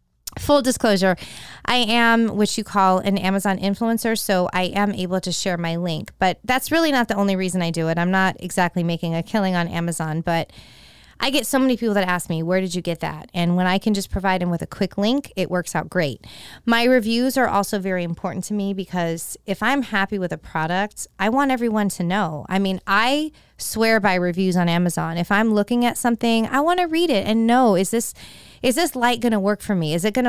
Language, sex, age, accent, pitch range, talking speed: English, female, 20-39, American, 180-225 Hz, 235 wpm